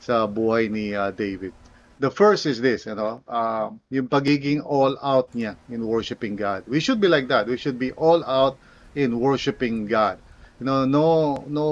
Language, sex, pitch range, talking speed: English, male, 120-145 Hz, 180 wpm